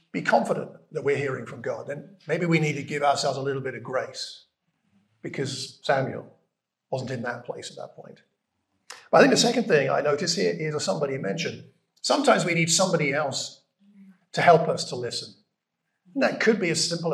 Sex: male